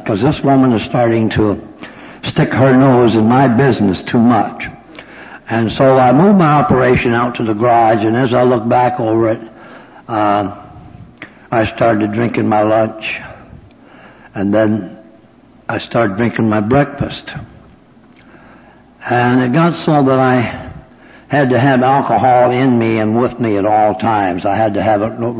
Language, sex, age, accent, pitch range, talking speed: English, male, 60-79, American, 105-130 Hz, 160 wpm